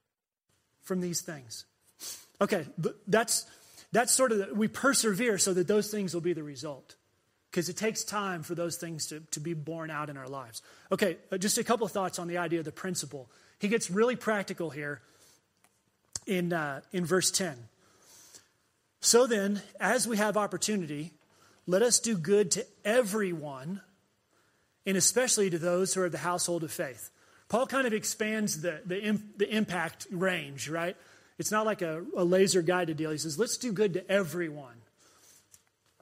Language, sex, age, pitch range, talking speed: English, male, 30-49, 165-210 Hz, 175 wpm